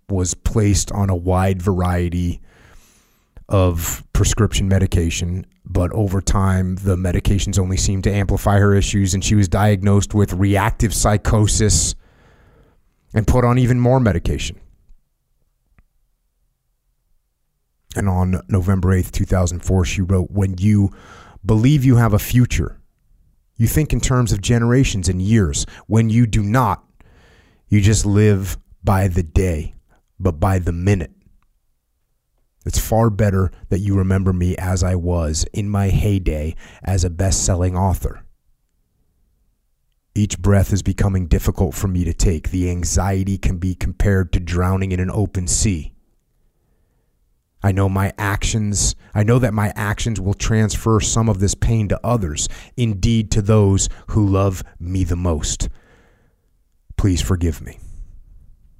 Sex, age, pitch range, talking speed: male, 30-49, 90-105 Hz, 135 wpm